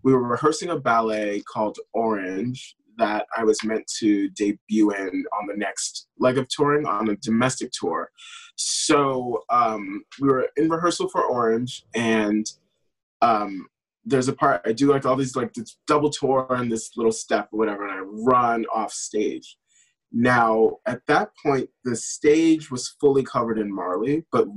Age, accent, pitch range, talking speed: 20-39, American, 110-150 Hz, 170 wpm